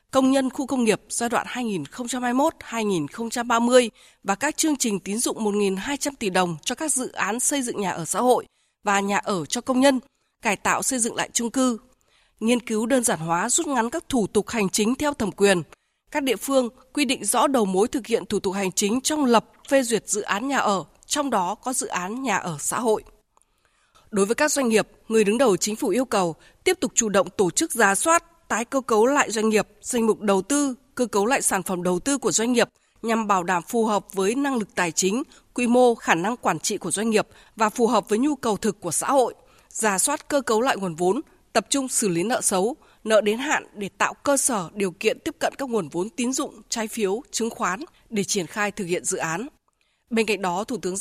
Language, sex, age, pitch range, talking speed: Vietnamese, female, 20-39, 200-265 Hz, 235 wpm